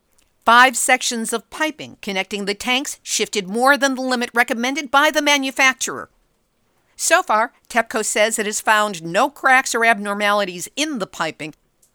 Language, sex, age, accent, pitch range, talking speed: English, female, 50-69, American, 205-265 Hz, 150 wpm